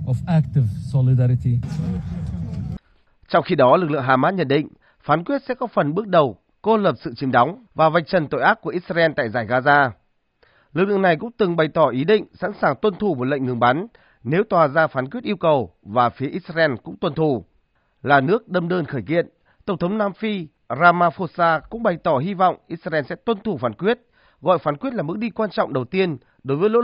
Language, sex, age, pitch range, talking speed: Vietnamese, male, 30-49, 140-205 Hz, 210 wpm